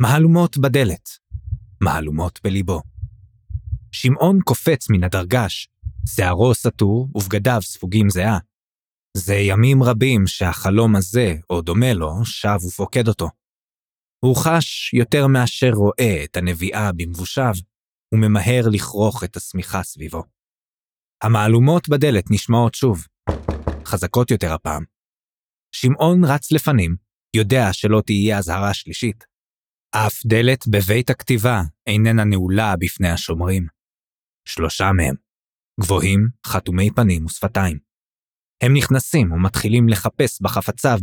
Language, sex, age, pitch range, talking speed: English, male, 20-39, 95-120 Hz, 100 wpm